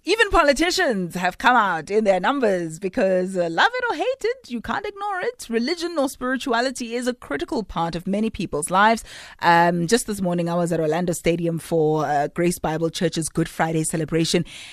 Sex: female